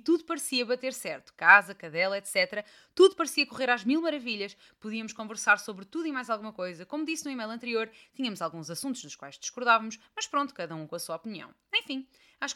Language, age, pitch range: Portuguese, 20-39, 195-270 Hz